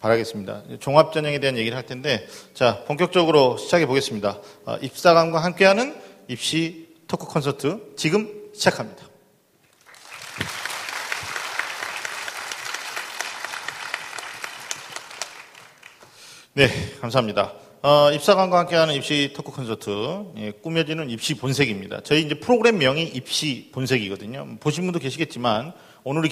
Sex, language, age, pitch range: male, Korean, 40-59, 120-165 Hz